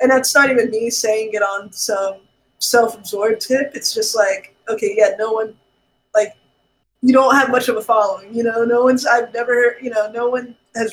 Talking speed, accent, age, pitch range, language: 205 wpm, American, 20-39, 205-250 Hz, English